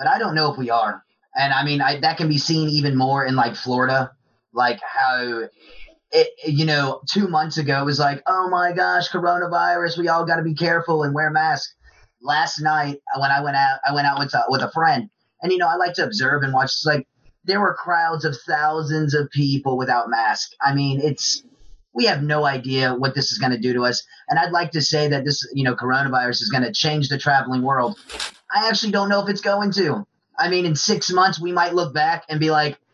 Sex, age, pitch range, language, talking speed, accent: male, 30-49, 135-170 Hz, English, 230 wpm, American